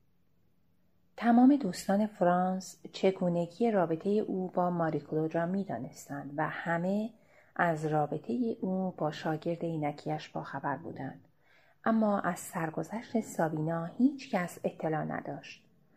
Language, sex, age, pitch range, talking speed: Persian, female, 30-49, 165-200 Hz, 105 wpm